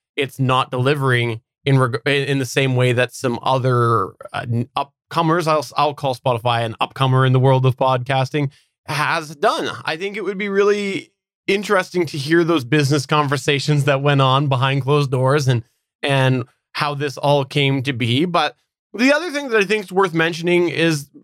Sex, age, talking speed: male, 20-39, 180 wpm